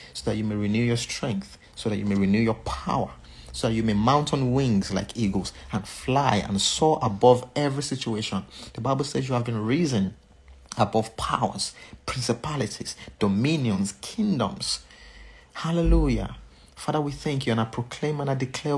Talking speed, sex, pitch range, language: 170 wpm, male, 100-145 Hz, English